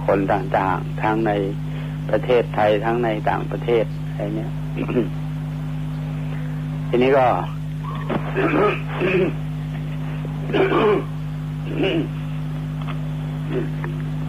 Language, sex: Thai, male